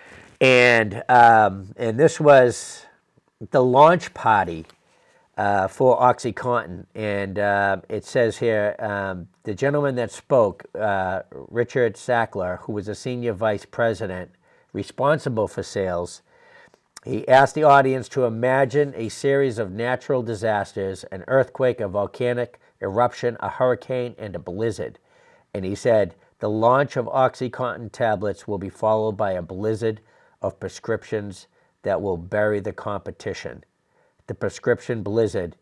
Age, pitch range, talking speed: 50-69, 100-125 Hz, 130 wpm